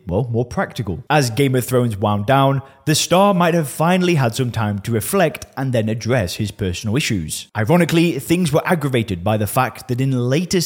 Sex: male